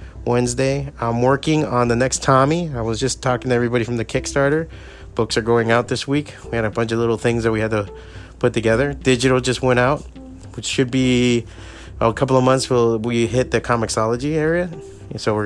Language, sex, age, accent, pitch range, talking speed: English, male, 30-49, American, 115-150 Hz, 210 wpm